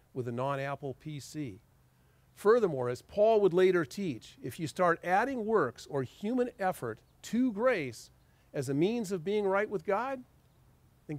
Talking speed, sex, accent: 155 wpm, male, American